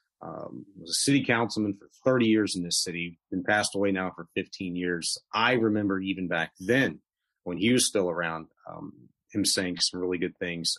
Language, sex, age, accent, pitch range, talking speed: English, male, 30-49, American, 90-115 Hz, 195 wpm